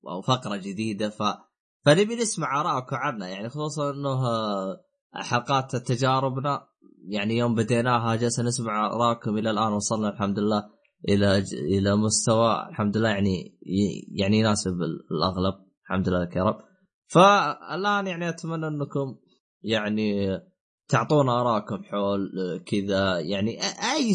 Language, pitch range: Arabic, 100-145 Hz